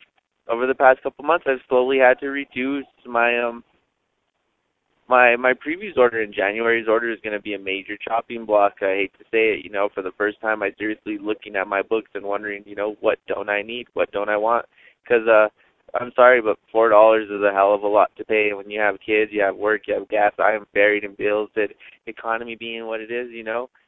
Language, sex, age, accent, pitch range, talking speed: English, male, 20-39, American, 105-125 Hz, 235 wpm